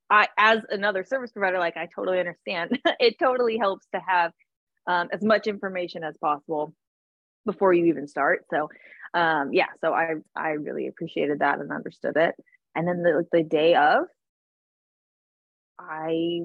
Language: English